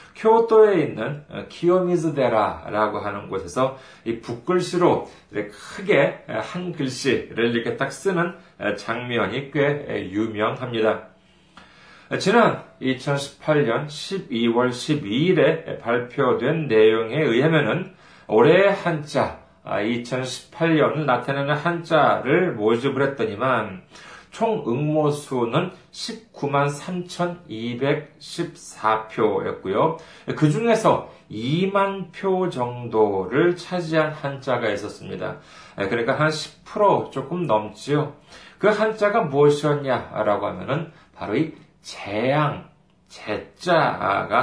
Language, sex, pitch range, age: Korean, male, 115-165 Hz, 40-59